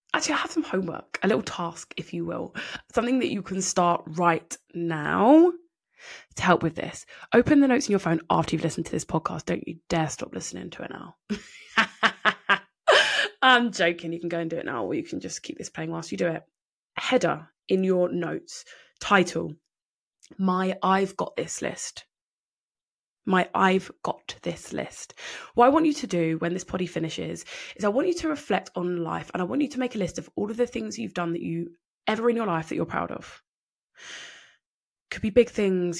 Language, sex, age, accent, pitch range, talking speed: English, female, 20-39, British, 170-215 Hz, 205 wpm